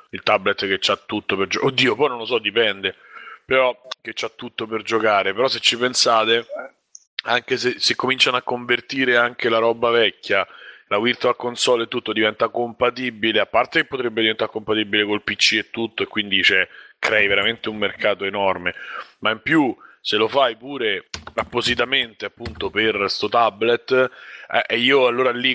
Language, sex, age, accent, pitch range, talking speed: Italian, male, 30-49, native, 115-125 Hz, 175 wpm